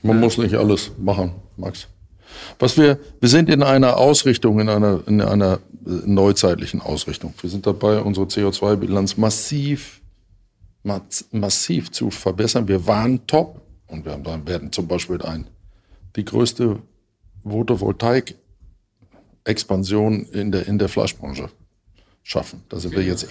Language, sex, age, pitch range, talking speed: German, male, 50-69, 95-115 Hz, 125 wpm